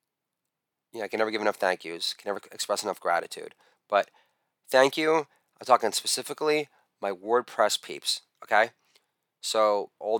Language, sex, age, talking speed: English, male, 30-49, 145 wpm